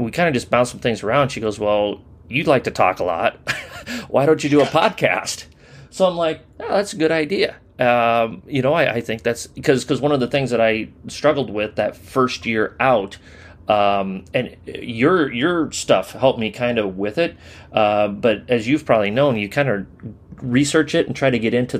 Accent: American